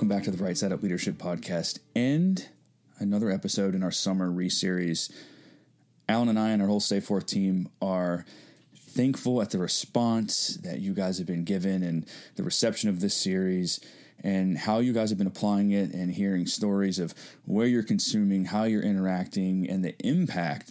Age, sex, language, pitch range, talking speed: 20-39, male, English, 95-110 Hz, 185 wpm